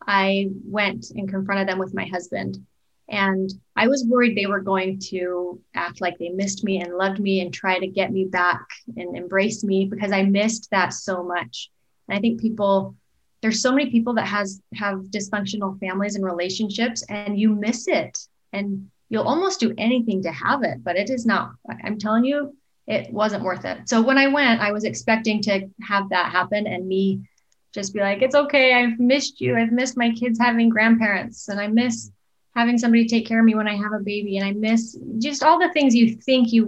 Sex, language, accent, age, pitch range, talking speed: female, English, American, 20-39, 195-230 Hz, 210 wpm